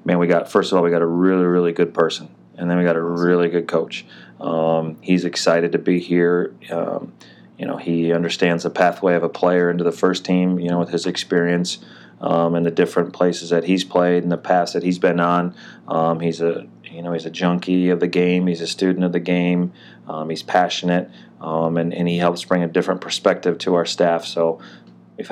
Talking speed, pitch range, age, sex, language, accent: 225 wpm, 85-90 Hz, 30-49, male, English, American